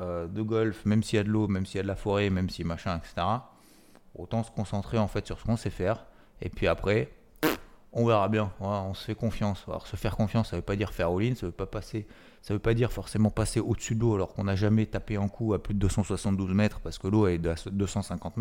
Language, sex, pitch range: French, male, 95-110 Hz